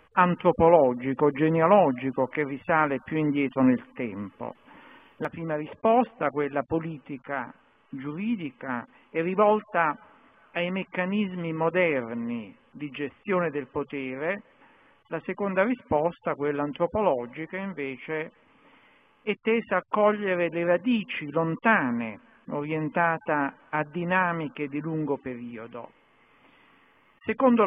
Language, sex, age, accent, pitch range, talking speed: Italian, male, 50-69, native, 150-205 Hz, 95 wpm